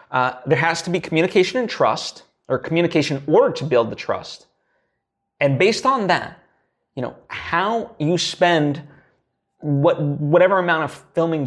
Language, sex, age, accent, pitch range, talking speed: English, male, 30-49, American, 125-175 Hz, 155 wpm